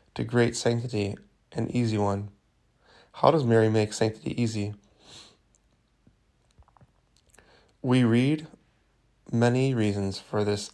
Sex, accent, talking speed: male, American, 100 wpm